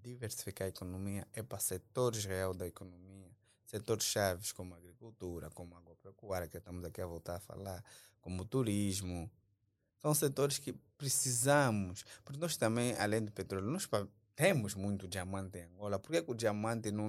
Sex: male